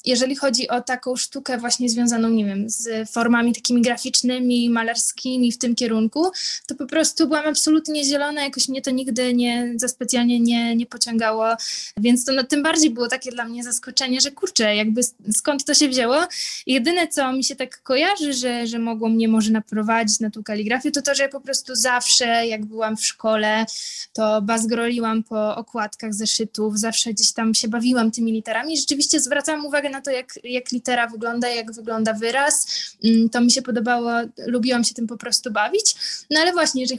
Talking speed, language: 180 wpm, Polish